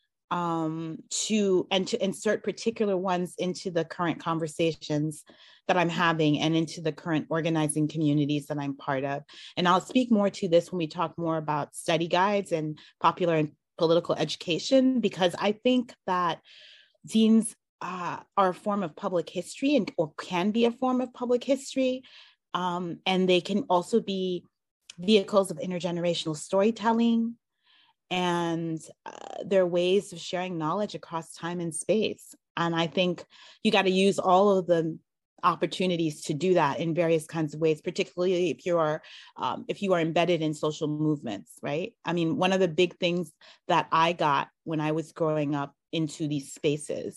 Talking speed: 170 wpm